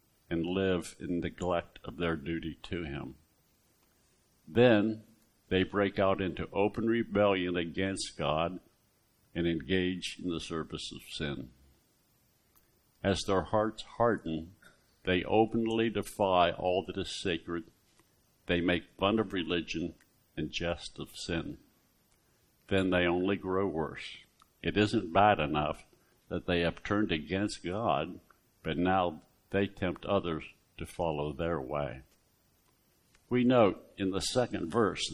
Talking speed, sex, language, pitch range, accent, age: 130 wpm, male, English, 85-105 Hz, American, 60-79